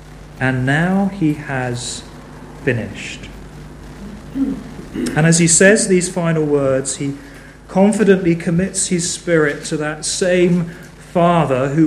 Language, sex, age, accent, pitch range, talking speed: English, male, 40-59, British, 125-165 Hz, 110 wpm